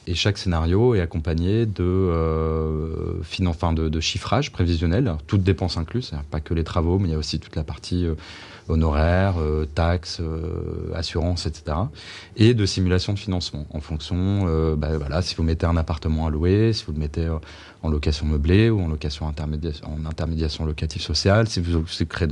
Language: French